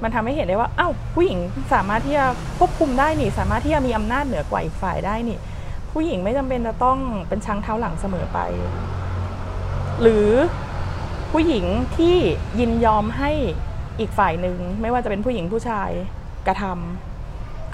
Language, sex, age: Thai, female, 20-39